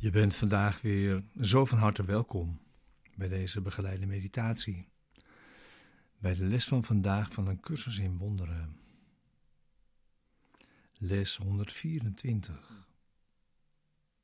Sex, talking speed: male, 100 wpm